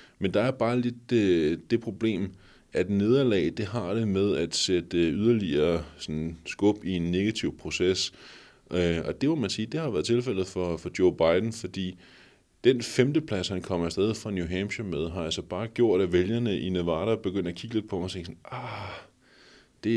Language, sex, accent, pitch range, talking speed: Danish, male, native, 85-110 Hz, 195 wpm